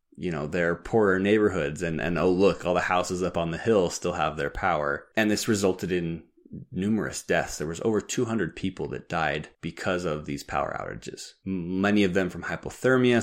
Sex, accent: male, American